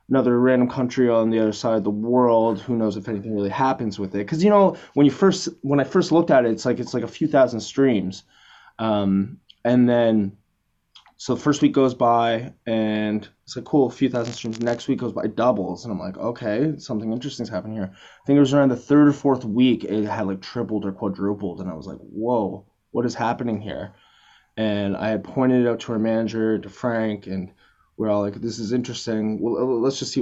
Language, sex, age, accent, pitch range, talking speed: English, male, 20-39, American, 105-130 Hz, 230 wpm